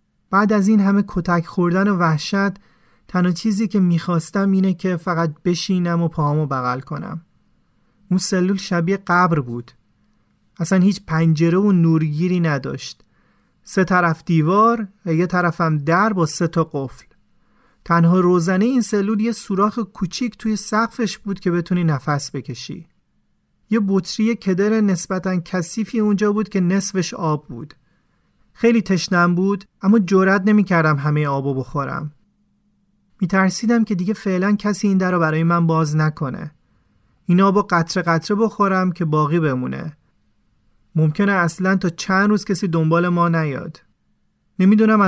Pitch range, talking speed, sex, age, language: 160-200 Hz, 140 wpm, male, 40-59, Persian